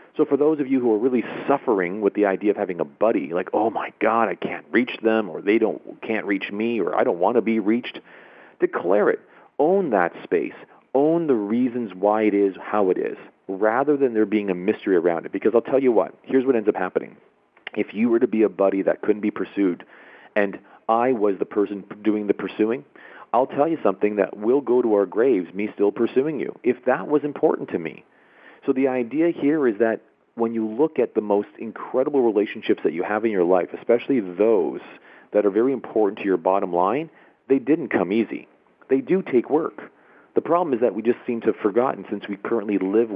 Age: 40-59